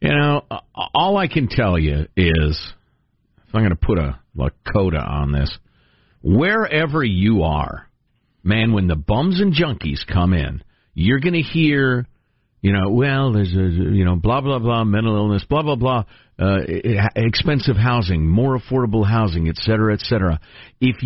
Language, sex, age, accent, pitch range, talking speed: English, male, 50-69, American, 95-155 Hz, 165 wpm